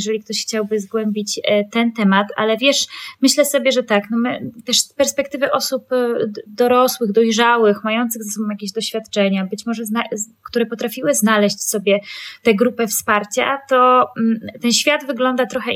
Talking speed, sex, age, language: 150 wpm, female, 20-39, Polish